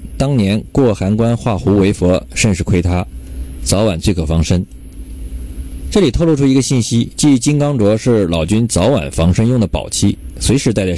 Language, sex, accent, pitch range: Chinese, male, native, 80-115 Hz